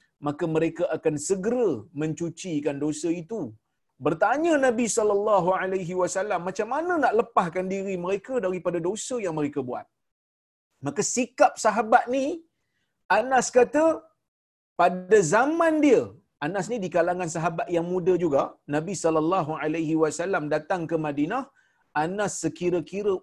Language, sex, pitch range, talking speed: Malayalam, male, 180-255 Hz, 125 wpm